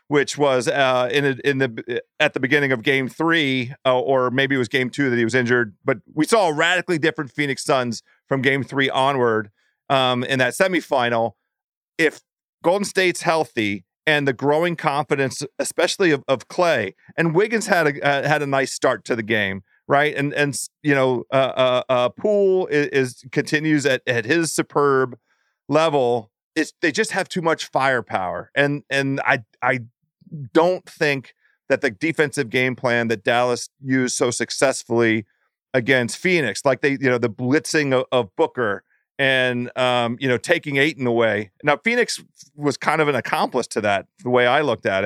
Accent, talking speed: American, 185 wpm